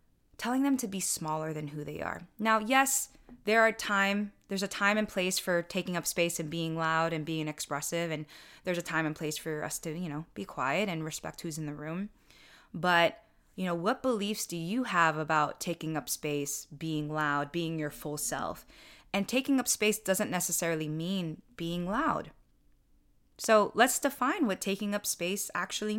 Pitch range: 155-195 Hz